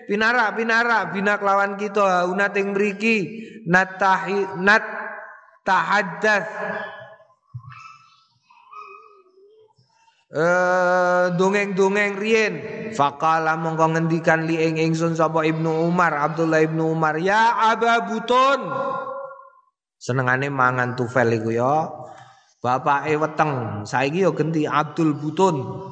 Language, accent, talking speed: Indonesian, native, 85 wpm